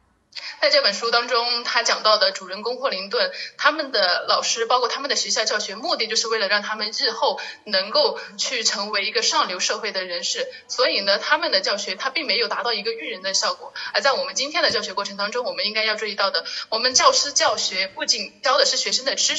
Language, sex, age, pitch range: Chinese, female, 20-39, 205-290 Hz